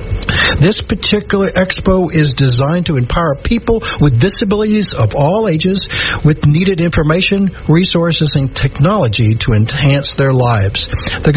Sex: male